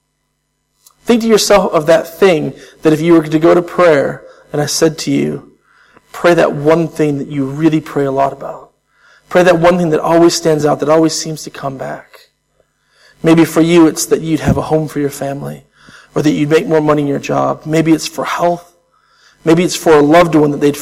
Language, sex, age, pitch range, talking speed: English, male, 40-59, 140-170 Hz, 220 wpm